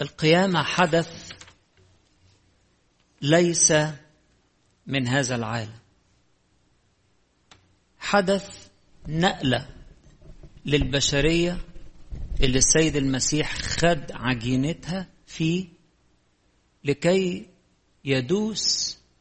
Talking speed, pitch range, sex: 55 wpm, 125-165 Hz, male